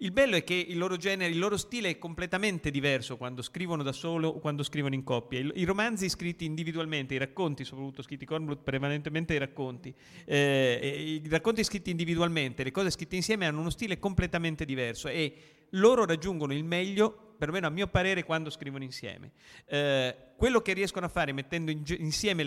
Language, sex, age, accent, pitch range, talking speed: Italian, male, 40-59, native, 145-180 Hz, 180 wpm